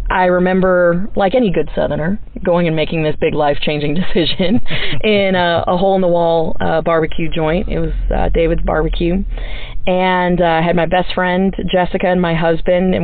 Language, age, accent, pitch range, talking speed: English, 20-39, American, 160-185 Hz, 165 wpm